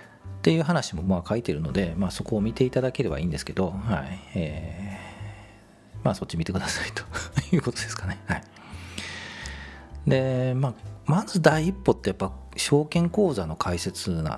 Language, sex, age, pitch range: Japanese, male, 40-59, 90-135 Hz